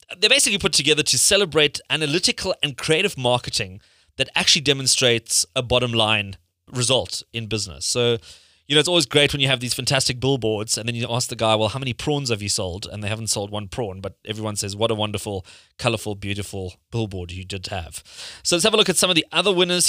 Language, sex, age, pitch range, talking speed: English, male, 20-39, 110-150 Hz, 220 wpm